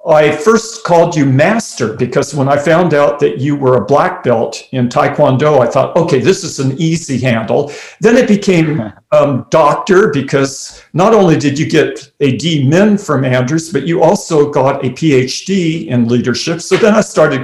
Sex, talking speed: male, 180 wpm